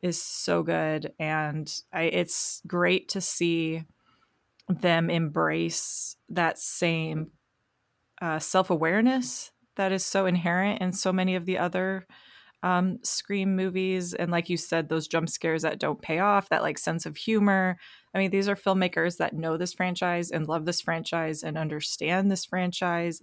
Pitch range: 160-185 Hz